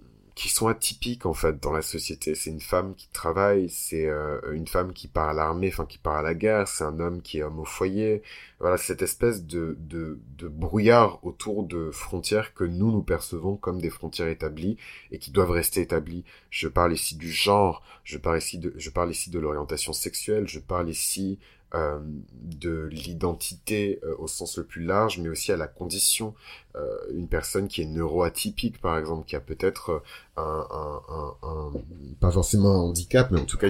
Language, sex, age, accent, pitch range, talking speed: French, male, 30-49, French, 80-95 Hz, 205 wpm